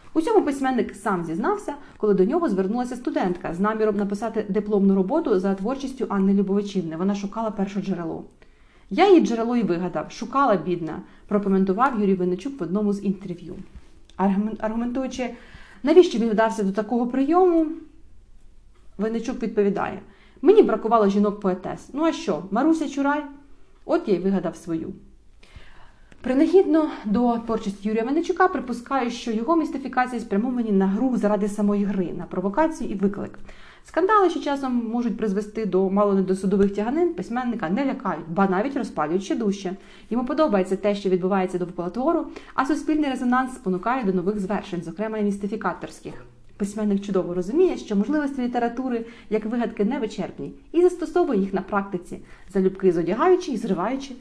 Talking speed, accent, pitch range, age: 145 wpm, native, 195-260 Hz, 30-49